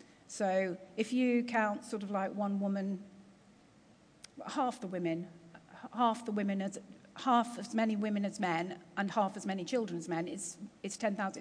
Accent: British